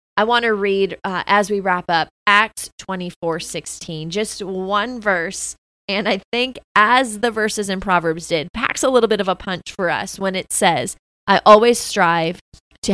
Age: 20-39